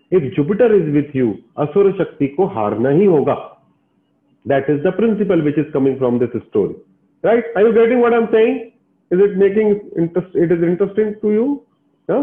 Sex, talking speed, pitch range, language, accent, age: male, 95 wpm, 140-200 Hz, Hindi, native, 40-59